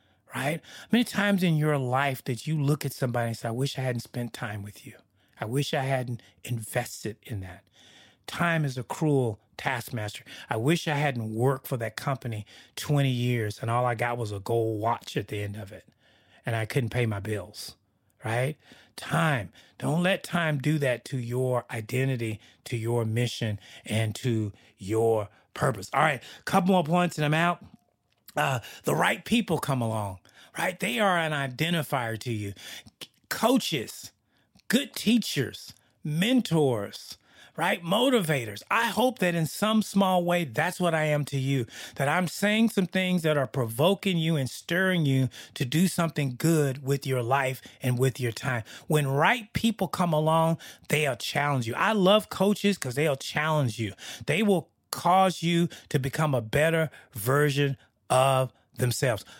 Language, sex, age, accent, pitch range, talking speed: English, male, 30-49, American, 115-160 Hz, 170 wpm